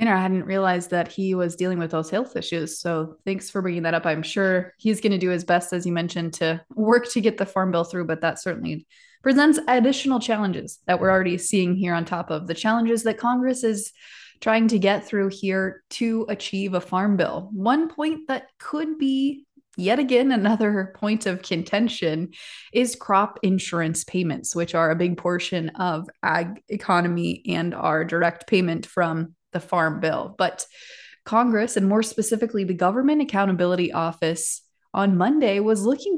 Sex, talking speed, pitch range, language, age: female, 180 wpm, 175-230 Hz, English, 20-39